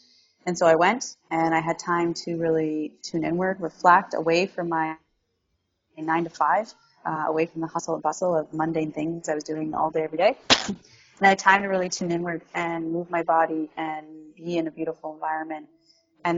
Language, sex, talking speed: English, female, 200 wpm